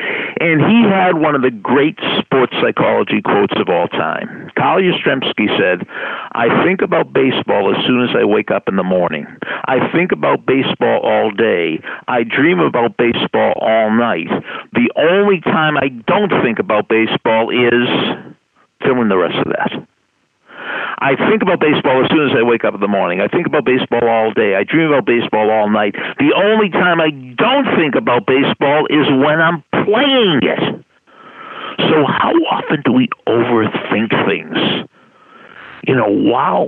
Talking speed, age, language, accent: 170 wpm, 50-69, English, American